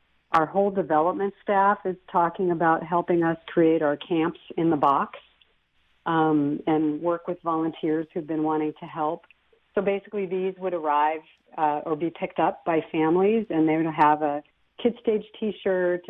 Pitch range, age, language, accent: 155-190 Hz, 50-69, English, American